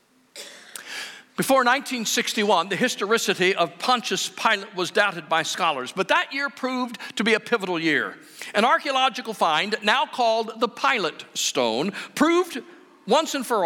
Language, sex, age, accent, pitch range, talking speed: English, male, 50-69, American, 200-270 Hz, 140 wpm